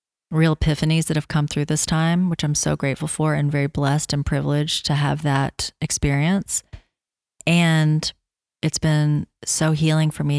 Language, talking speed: English, 170 wpm